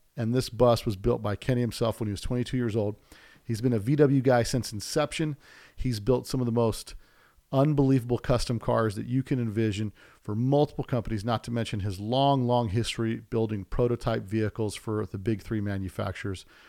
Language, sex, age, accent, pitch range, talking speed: English, male, 40-59, American, 110-130 Hz, 185 wpm